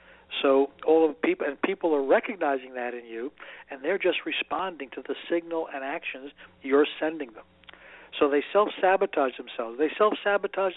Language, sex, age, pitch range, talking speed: English, male, 60-79, 135-165 Hz, 160 wpm